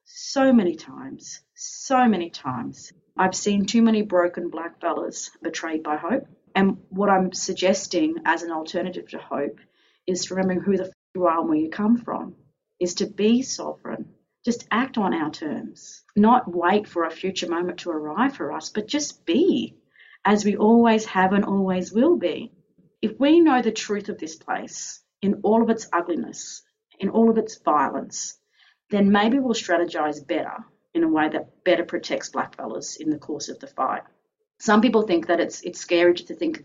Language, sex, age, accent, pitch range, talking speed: English, female, 30-49, Australian, 170-225 Hz, 185 wpm